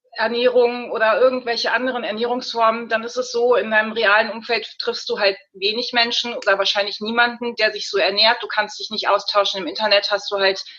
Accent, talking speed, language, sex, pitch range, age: German, 195 wpm, German, female, 205-240 Hz, 30-49